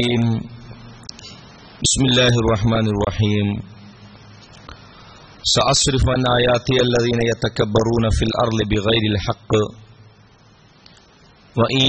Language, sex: Malayalam, male